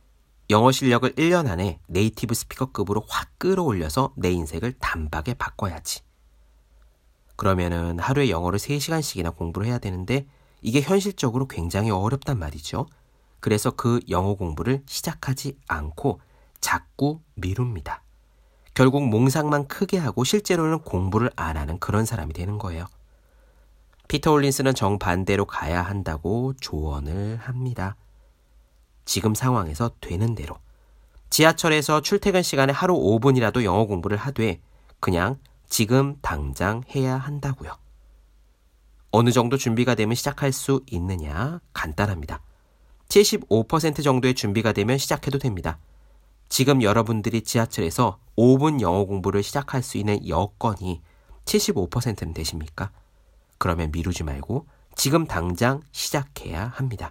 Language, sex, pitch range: Korean, male, 85-135 Hz